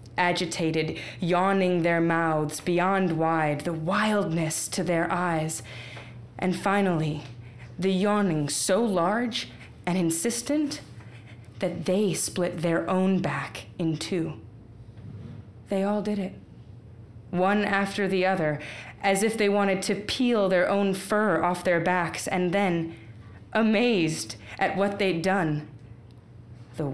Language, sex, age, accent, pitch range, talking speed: English, female, 20-39, American, 115-175 Hz, 120 wpm